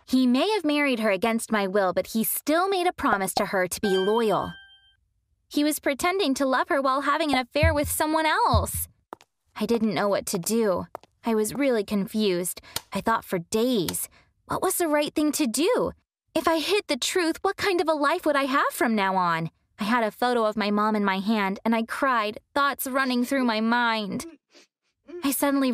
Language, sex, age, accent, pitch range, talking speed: English, female, 20-39, American, 195-280 Hz, 205 wpm